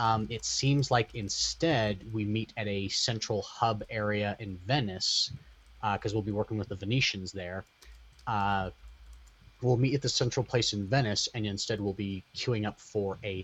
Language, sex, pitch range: English, male, 100-115 Hz